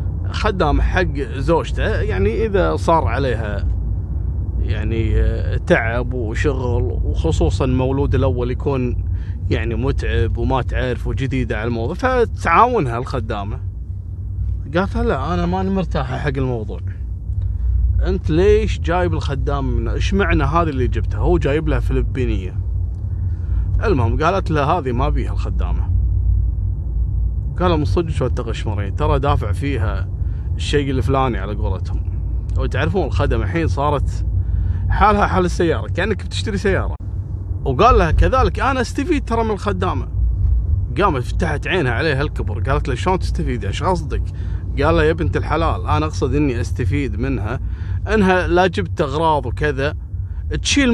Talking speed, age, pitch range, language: 125 wpm, 30-49, 90-110 Hz, Arabic